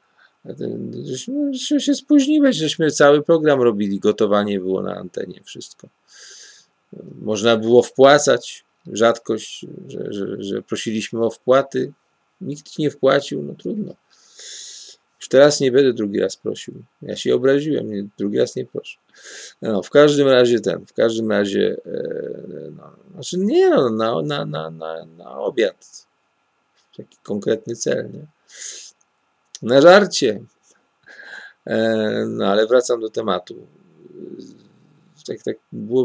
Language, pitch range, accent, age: Polish, 110-150 Hz, native, 40-59